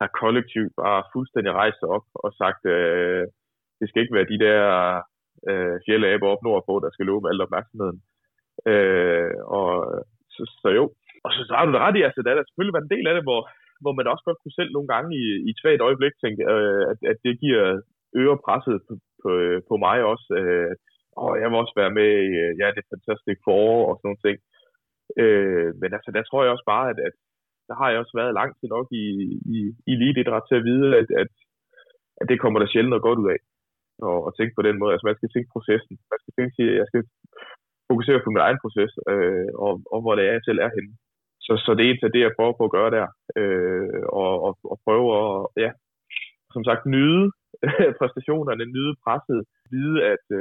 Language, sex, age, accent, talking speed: Danish, male, 20-39, native, 220 wpm